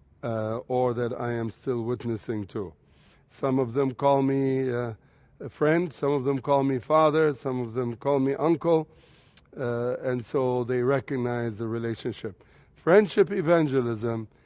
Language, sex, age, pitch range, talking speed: English, male, 60-79, 130-155 Hz, 155 wpm